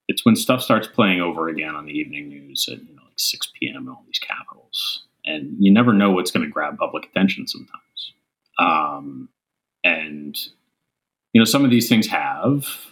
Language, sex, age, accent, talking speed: English, male, 30-49, American, 190 wpm